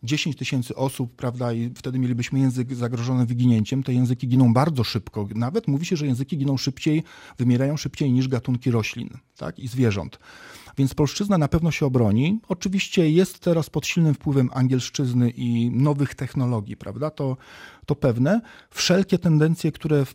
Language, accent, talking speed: Polish, native, 160 wpm